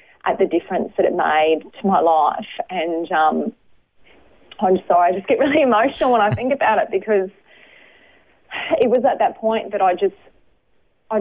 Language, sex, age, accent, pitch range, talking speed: English, female, 30-49, Australian, 170-200 Hz, 175 wpm